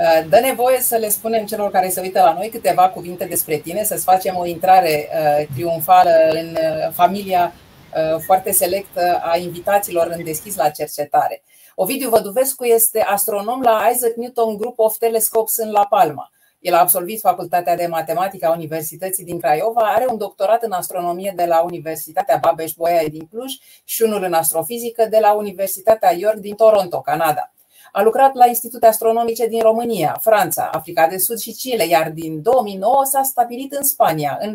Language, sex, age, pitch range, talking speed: Romanian, female, 30-49, 170-230 Hz, 170 wpm